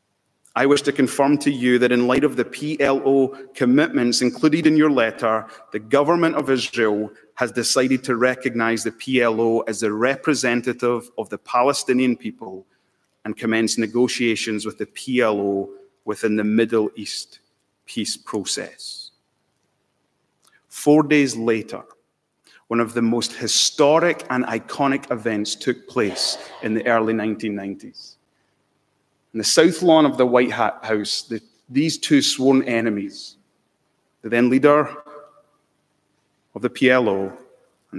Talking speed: 130 wpm